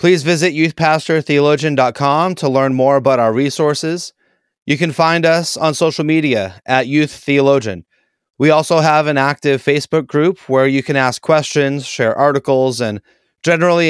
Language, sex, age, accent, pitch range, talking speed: English, male, 30-49, American, 130-155 Hz, 150 wpm